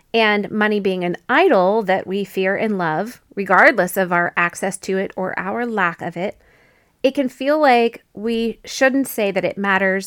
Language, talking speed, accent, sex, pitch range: English, 185 wpm, American, female, 190-250 Hz